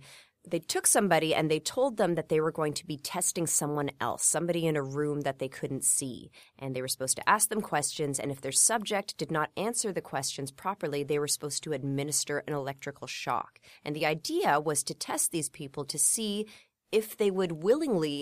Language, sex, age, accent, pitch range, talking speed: English, female, 30-49, American, 140-180 Hz, 210 wpm